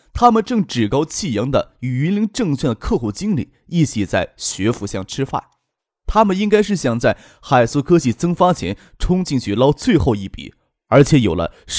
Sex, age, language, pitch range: male, 20-39, Chinese, 120-190 Hz